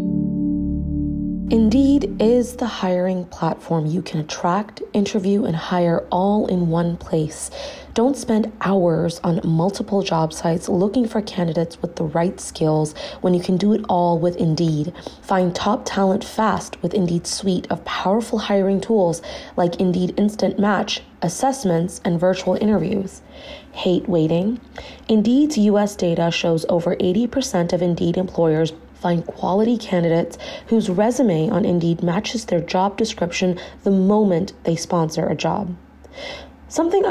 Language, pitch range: English, 175-220 Hz